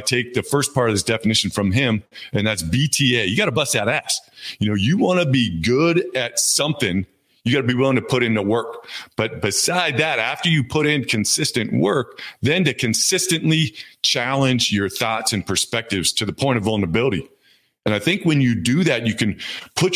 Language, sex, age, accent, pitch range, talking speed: English, male, 40-59, American, 105-140 Hz, 205 wpm